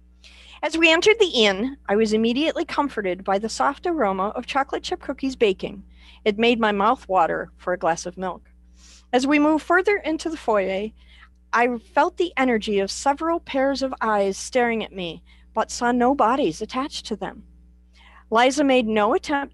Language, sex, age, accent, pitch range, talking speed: English, female, 50-69, American, 180-270 Hz, 180 wpm